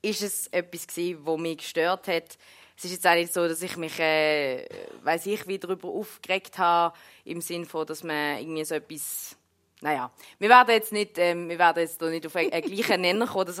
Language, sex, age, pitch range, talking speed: German, female, 20-39, 155-195 Hz, 205 wpm